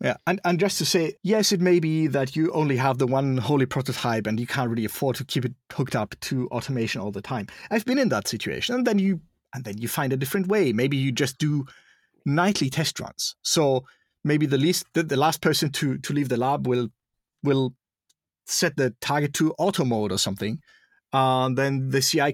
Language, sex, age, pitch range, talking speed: English, male, 30-49, 130-165 Hz, 220 wpm